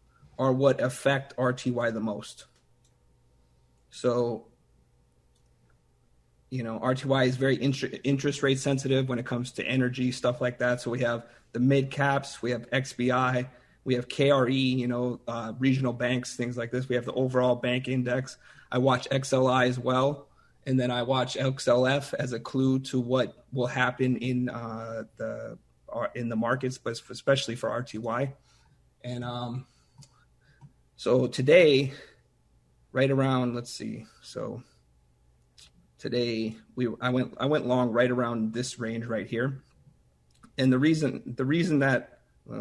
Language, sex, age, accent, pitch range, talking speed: English, male, 30-49, American, 115-135 Hz, 150 wpm